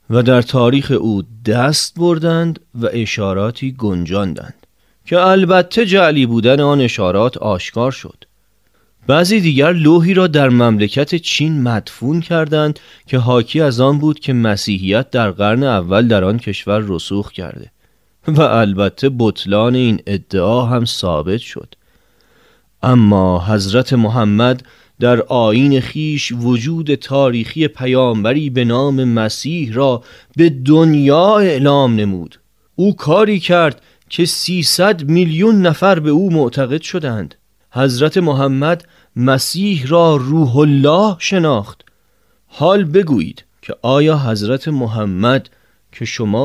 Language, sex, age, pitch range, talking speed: Persian, male, 30-49, 110-155 Hz, 120 wpm